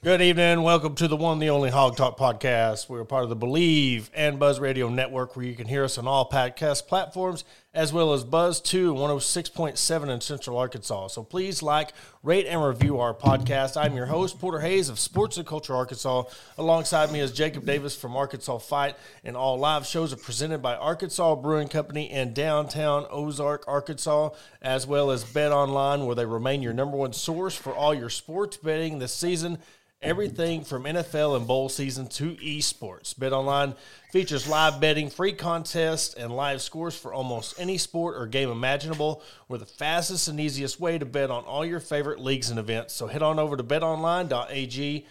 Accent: American